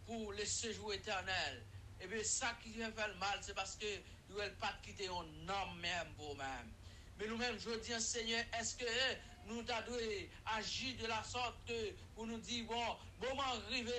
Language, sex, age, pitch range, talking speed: English, male, 50-69, 170-240 Hz, 180 wpm